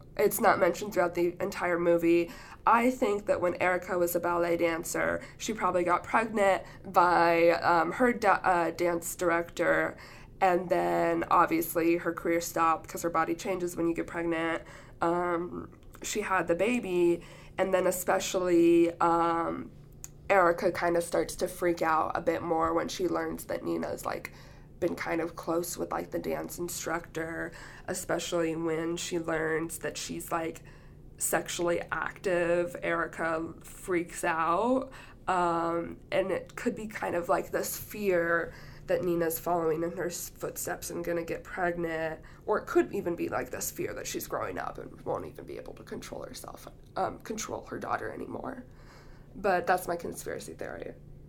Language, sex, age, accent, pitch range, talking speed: English, female, 20-39, American, 165-180 Hz, 160 wpm